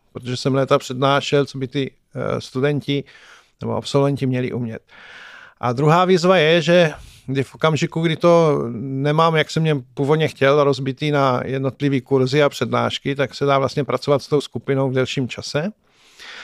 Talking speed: 165 wpm